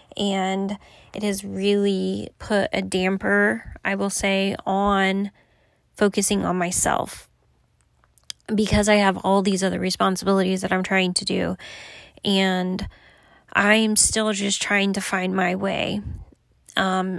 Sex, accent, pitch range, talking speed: female, American, 190-205 Hz, 125 wpm